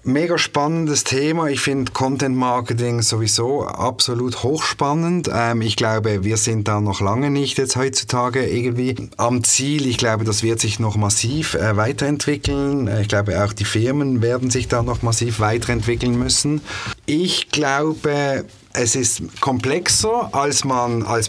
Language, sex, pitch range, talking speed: German, male, 105-135 Hz, 145 wpm